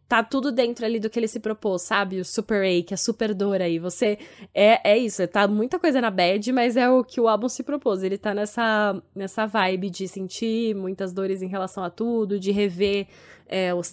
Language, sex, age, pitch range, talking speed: Portuguese, female, 10-29, 180-210 Hz, 210 wpm